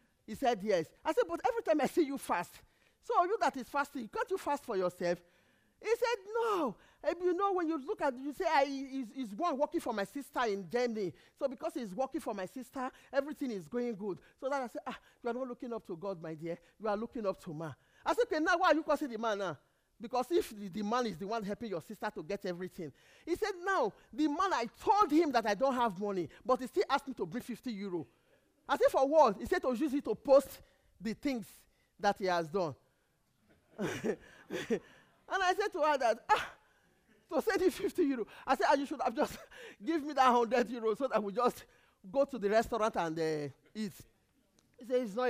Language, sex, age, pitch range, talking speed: English, male, 40-59, 215-315 Hz, 235 wpm